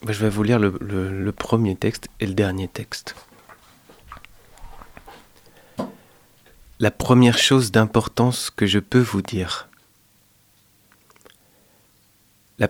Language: French